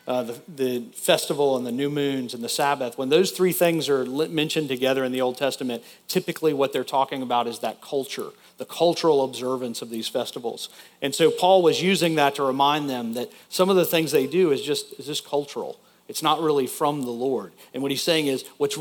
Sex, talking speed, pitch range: male, 235 wpm, 125-160 Hz